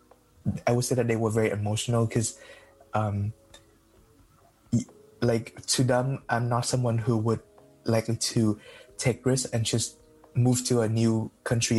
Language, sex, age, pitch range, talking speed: English, male, 20-39, 110-120 Hz, 150 wpm